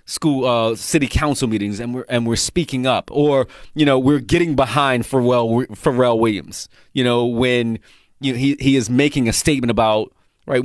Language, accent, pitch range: English, American, 115-140 Hz